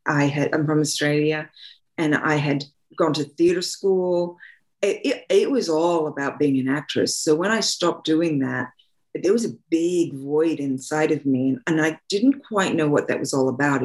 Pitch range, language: 140-170 Hz, English